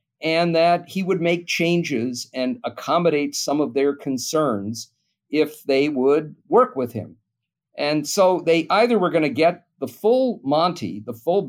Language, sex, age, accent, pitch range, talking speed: English, male, 50-69, American, 125-175 Hz, 160 wpm